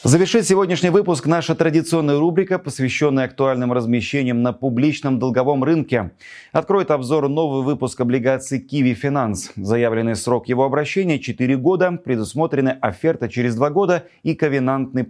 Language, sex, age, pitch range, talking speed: Russian, male, 30-49, 115-150 Hz, 135 wpm